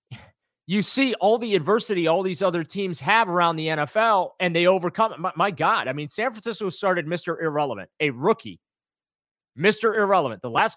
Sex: male